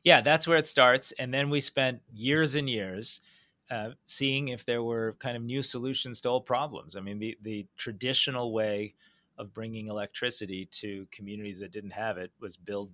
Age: 30-49